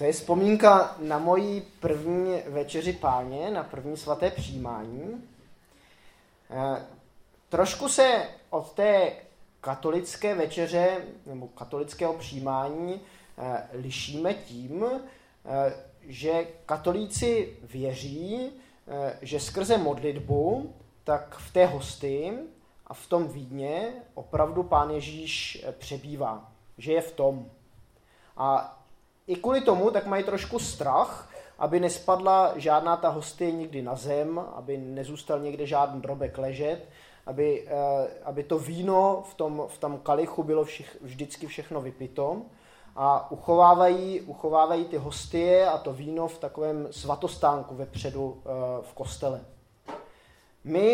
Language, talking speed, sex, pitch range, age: Czech, 110 wpm, male, 140-180 Hz, 20-39